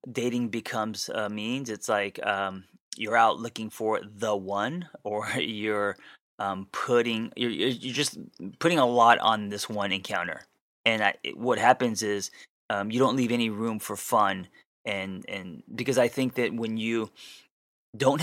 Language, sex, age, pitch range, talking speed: English, male, 20-39, 105-125 Hz, 165 wpm